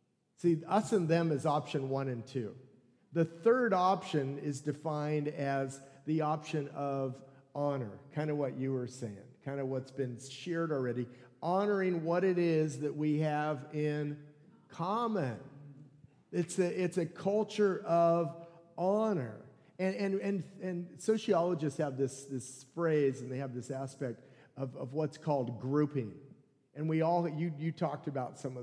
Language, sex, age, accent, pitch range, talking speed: English, male, 50-69, American, 135-170 Hz, 155 wpm